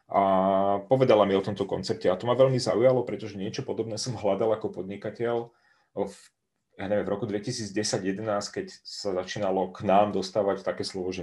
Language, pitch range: Czech, 95-115 Hz